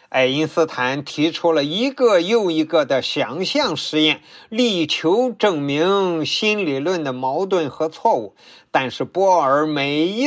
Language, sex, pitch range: Chinese, male, 140-200 Hz